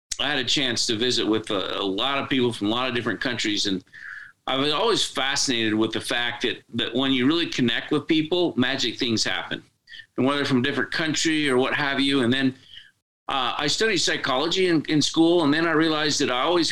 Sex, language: male, English